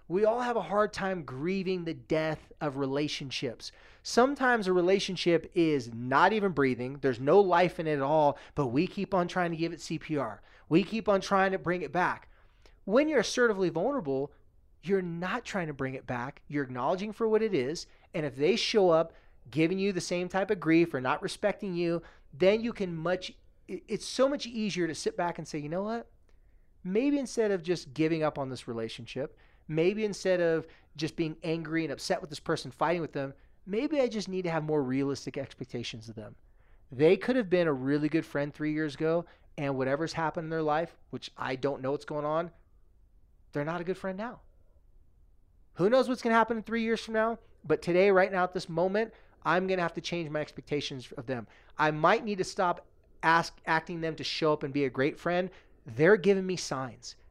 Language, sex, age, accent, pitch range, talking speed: English, male, 30-49, American, 145-190 Hz, 215 wpm